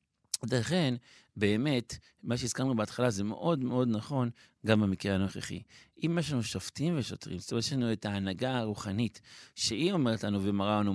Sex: male